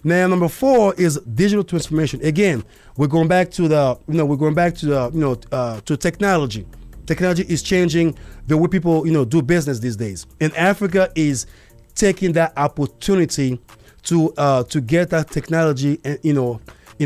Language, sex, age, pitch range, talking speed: English, male, 30-49, 140-180 Hz, 185 wpm